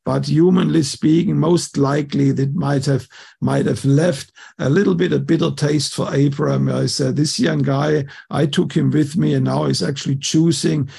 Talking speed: 185 wpm